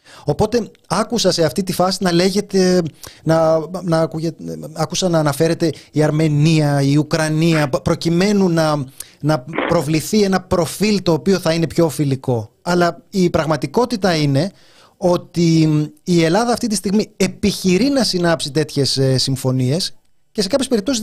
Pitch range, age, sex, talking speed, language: 155-205 Hz, 30-49, male, 135 wpm, Greek